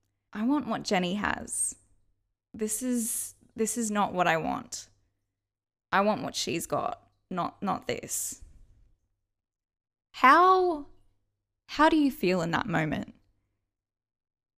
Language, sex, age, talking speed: English, female, 10-29, 120 wpm